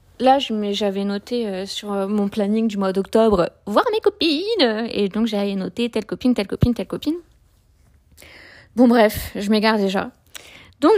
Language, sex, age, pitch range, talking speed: French, female, 20-39, 200-250 Hz, 160 wpm